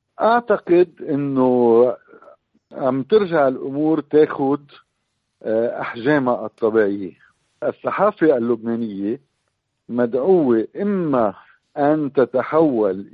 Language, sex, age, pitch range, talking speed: Arabic, male, 50-69, 115-150 Hz, 65 wpm